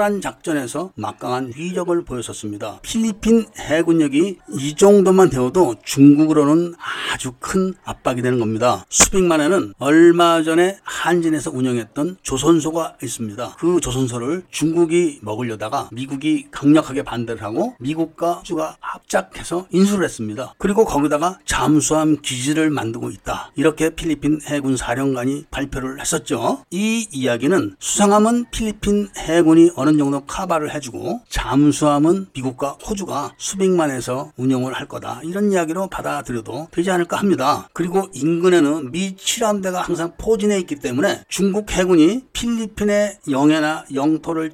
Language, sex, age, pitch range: Korean, male, 40-59, 135-185 Hz